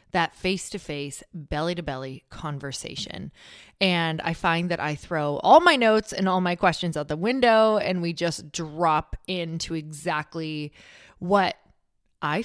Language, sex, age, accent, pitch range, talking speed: English, female, 20-39, American, 155-200 Hz, 135 wpm